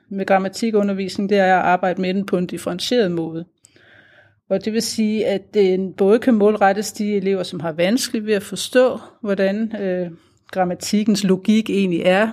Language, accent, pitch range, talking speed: Danish, native, 170-215 Hz, 170 wpm